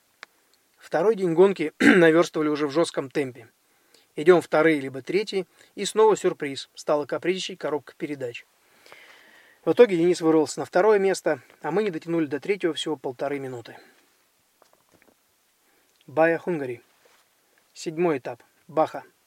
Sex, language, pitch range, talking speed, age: male, Russian, 150-185 Hz, 130 wpm, 20-39